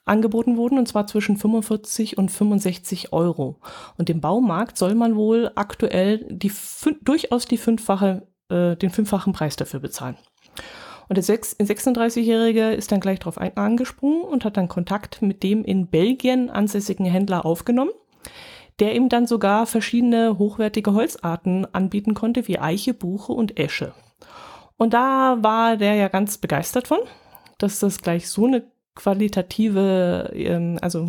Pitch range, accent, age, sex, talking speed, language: 190-235 Hz, German, 30-49, female, 135 wpm, German